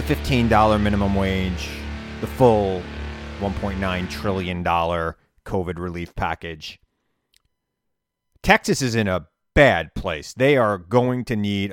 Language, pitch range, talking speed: English, 90-115 Hz, 105 wpm